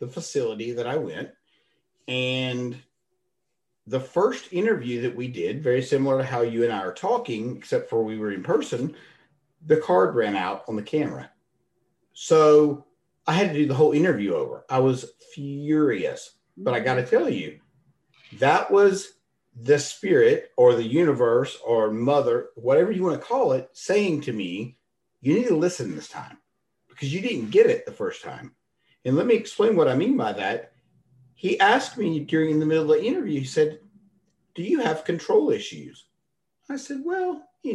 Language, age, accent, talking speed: English, 50-69, American, 180 wpm